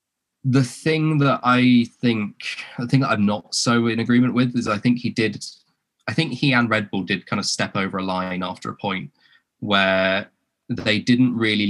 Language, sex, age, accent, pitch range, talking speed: English, male, 20-39, British, 95-125 Hz, 195 wpm